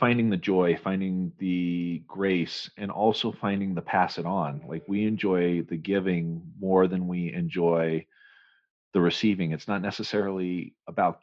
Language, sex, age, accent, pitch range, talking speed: English, male, 40-59, American, 85-100 Hz, 150 wpm